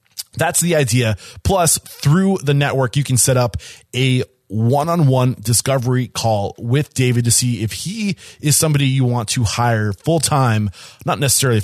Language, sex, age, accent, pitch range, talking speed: English, male, 20-39, American, 110-140 Hz, 160 wpm